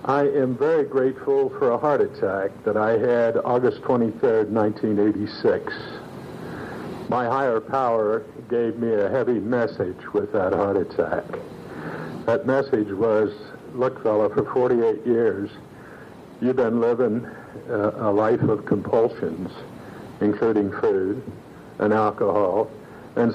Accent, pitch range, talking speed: American, 100-125 Hz, 120 wpm